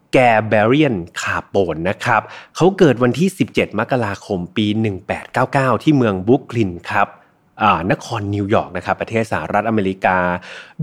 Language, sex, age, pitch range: Thai, male, 30-49, 105-150 Hz